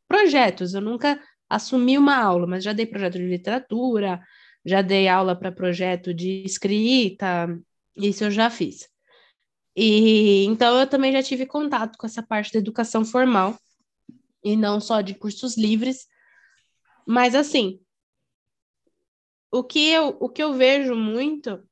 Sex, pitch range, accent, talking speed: female, 200-260 Hz, Brazilian, 135 wpm